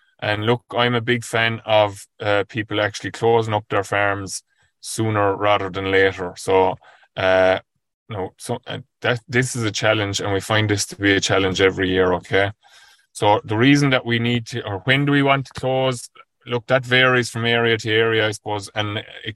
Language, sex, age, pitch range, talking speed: English, male, 20-39, 100-115 Hz, 205 wpm